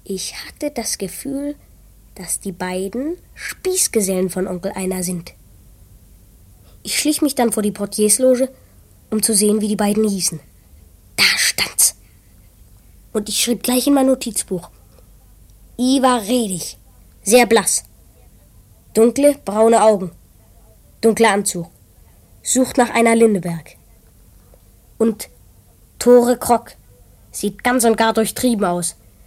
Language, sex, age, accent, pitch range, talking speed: German, female, 20-39, German, 160-240 Hz, 120 wpm